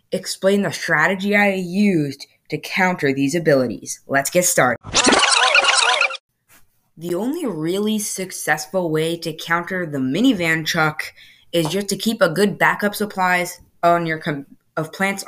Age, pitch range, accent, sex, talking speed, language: 20-39, 160-205 Hz, American, female, 140 wpm, English